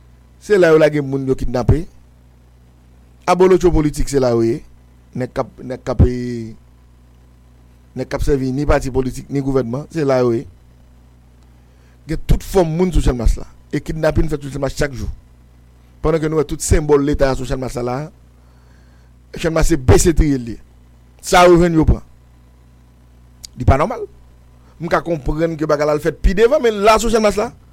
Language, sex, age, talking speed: English, male, 50-69, 180 wpm